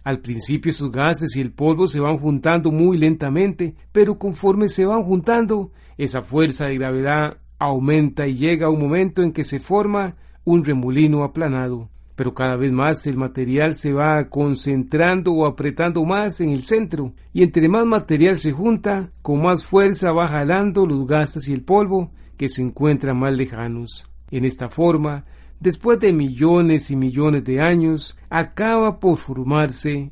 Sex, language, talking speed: male, Spanish, 165 wpm